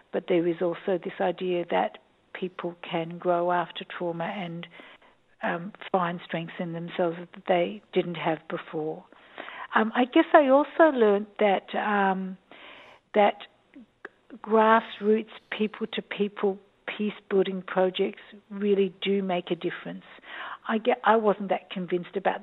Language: English